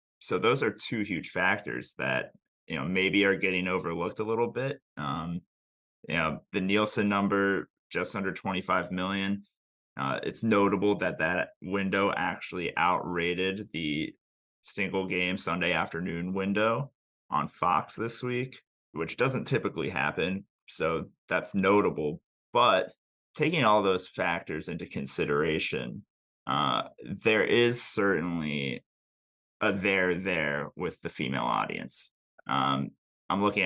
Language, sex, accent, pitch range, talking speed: English, male, American, 90-105 Hz, 130 wpm